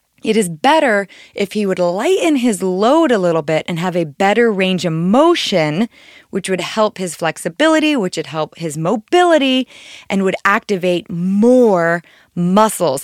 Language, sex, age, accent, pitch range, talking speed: English, female, 20-39, American, 175-240 Hz, 155 wpm